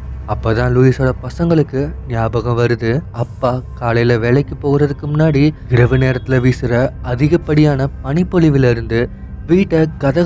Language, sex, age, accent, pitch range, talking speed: Tamil, male, 20-39, native, 115-145 Hz, 105 wpm